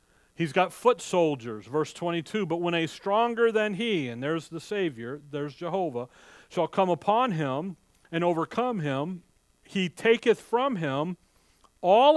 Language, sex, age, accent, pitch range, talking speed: English, male, 40-59, American, 150-195 Hz, 150 wpm